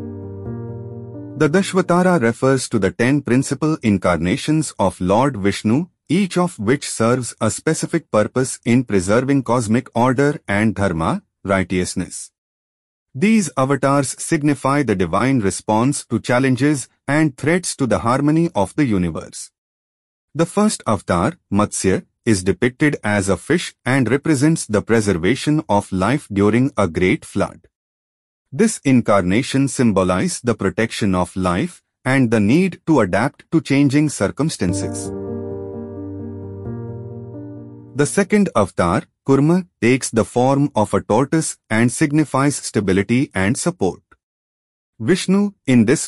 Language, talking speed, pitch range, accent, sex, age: English, 120 wpm, 95-145 Hz, Indian, male, 30-49